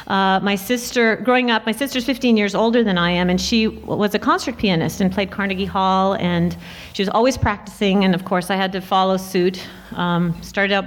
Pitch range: 180-205 Hz